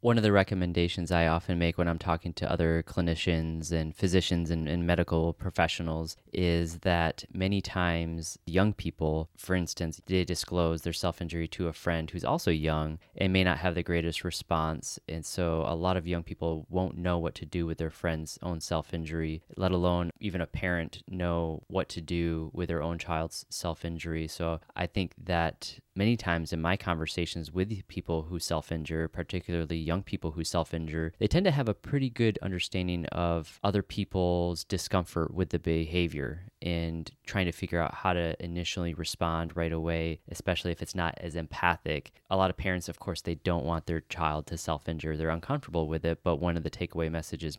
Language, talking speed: English, 190 wpm